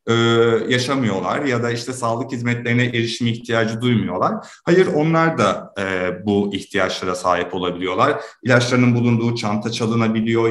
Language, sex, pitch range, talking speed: Turkish, male, 105-155 Hz, 115 wpm